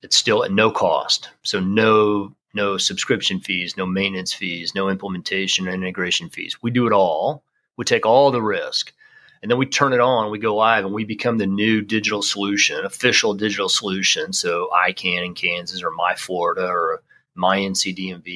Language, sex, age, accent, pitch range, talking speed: English, male, 40-59, American, 95-130 Hz, 185 wpm